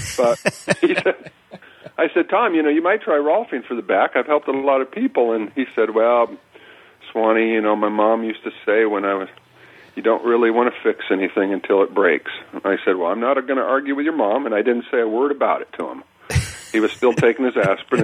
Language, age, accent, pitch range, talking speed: English, 40-59, American, 105-140 Hz, 240 wpm